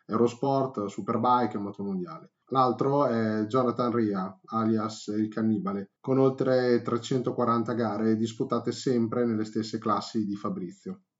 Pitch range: 100-130 Hz